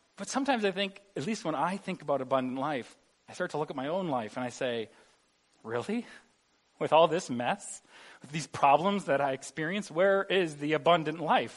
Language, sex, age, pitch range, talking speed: English, male, 40-59, 140-195 Hz, 200 wpm